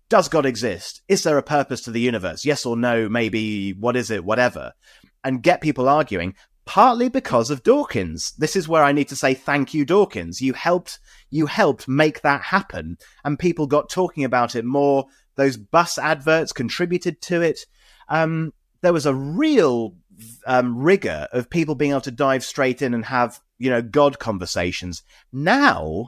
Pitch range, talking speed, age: 120-155 Hz, 180 wpm, 30-49